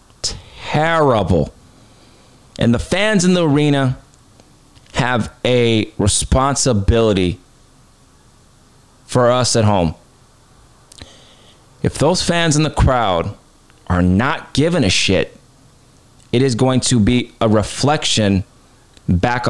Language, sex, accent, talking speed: English, male, American, 100 wpm